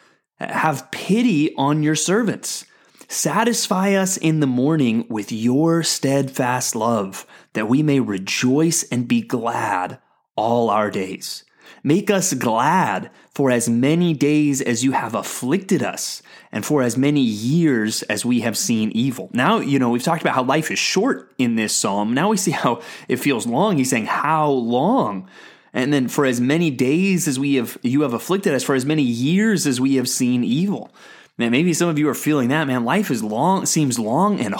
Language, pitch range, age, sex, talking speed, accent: English, 120-165 Hz, 30-49, male, 185 wpm, American